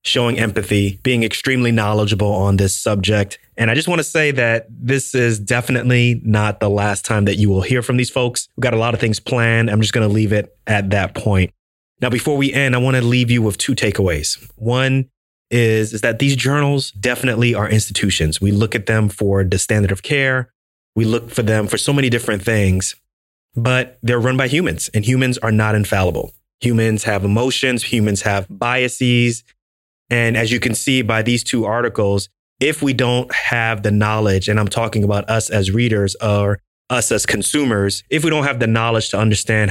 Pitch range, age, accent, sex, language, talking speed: 105-125 Hz, 30-49, American, male, English, 200 wpm